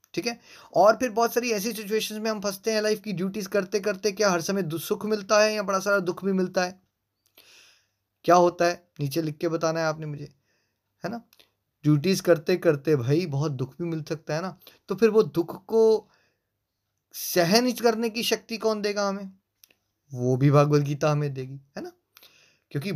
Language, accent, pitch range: Hindi, native, 150-210 Hz